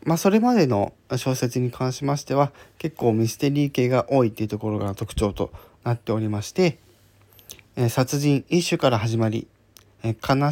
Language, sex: Japanese, male